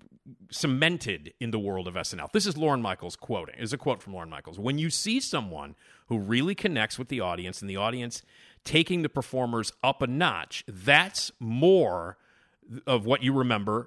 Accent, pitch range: American, 105-145 Hz